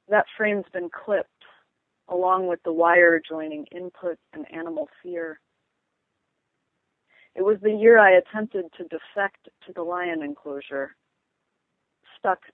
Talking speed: 125 wpm